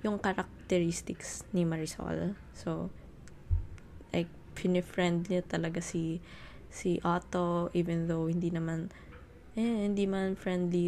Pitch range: 125-185 Hz